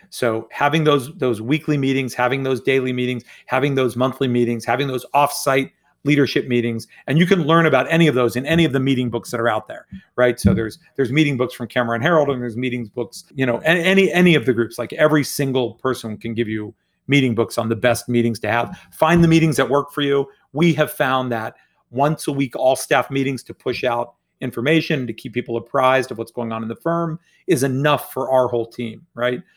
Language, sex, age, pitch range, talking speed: English, male, 40-59, 120-150 Hz, 225 wpm